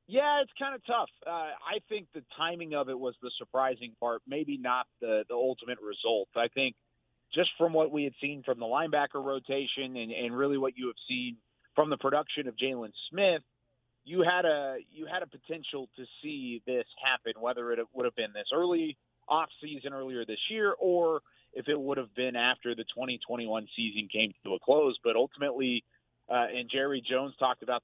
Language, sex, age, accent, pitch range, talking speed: English, male, 30-49, American, 120-145 Hz, 200 wpm